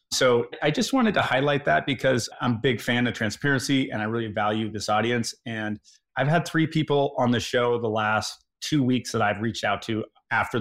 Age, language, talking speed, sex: 30-49, English, 215 wpm, male